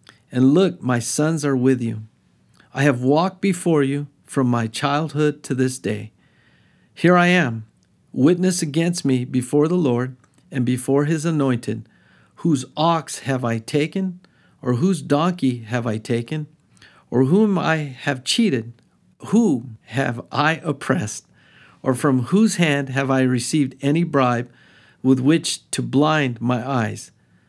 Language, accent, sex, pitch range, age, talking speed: English, American, male, 120-155 Hz, 50-69, 145 wpm